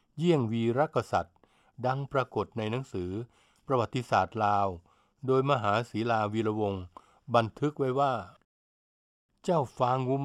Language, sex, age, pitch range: Thai, male, 60-79, 105-140 Hz